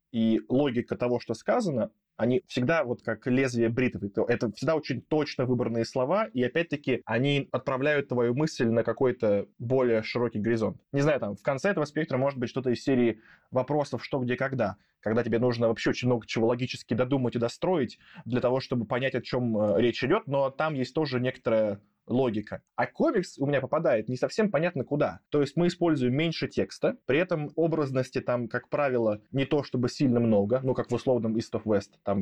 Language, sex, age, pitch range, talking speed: Russian, male, 20-39, 115-145 Hz, 190 wpm